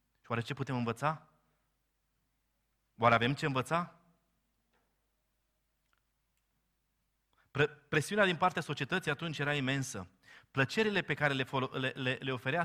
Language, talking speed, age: Romanian, 105 wpm, 30-49